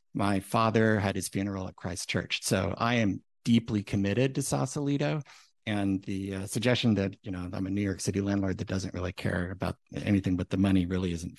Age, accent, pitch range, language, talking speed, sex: 50-69, American, 95-115 Hz, English, 205 wpm, male